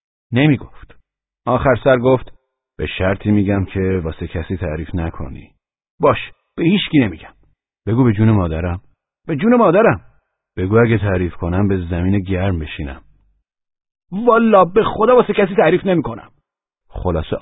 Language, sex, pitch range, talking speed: Persian, male, 80-110 Hz, 135 wpm